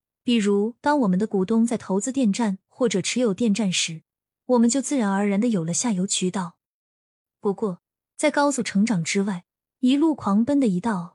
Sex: female